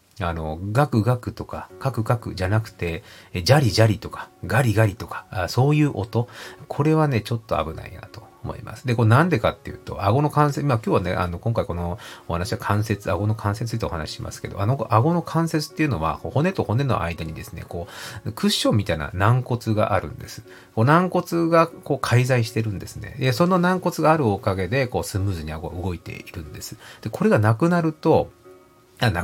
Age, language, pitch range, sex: 40-59, Japanese, 100-125 Hz, male